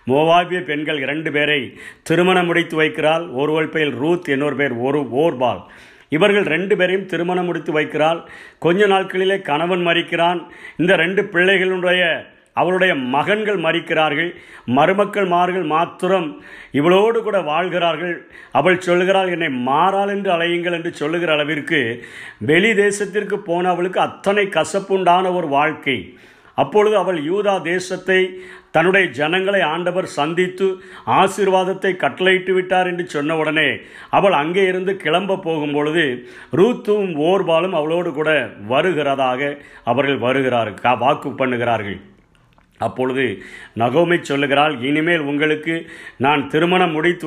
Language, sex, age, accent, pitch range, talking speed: Tamil, male, 50-69, native, 150-185 Hz, 110 wpm